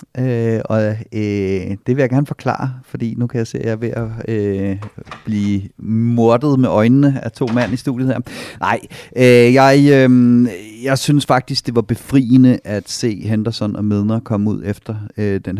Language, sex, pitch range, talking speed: Danish, male, 100-120 Hz, 190 wpm